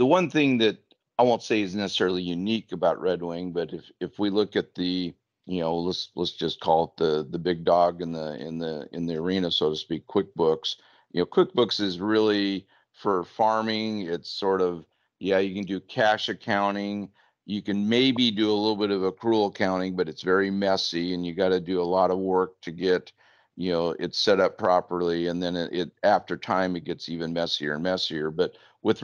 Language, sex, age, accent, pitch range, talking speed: English, male, 50-69, American, 90-105 Hz, 215 wpm